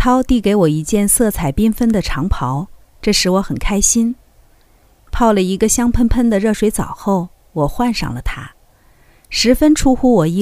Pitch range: 155-225 Hz